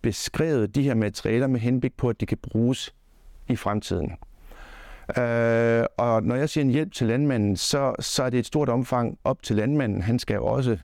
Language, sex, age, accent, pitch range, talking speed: Danish, male, 60-79, native, 105-130 Hz, 200 wpm